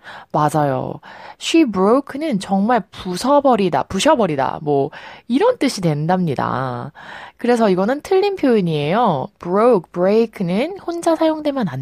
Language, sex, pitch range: Korean, female, 160-250 Hz